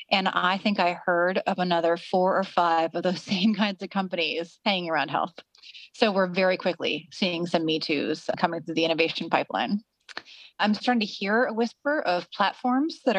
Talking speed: 180 wpm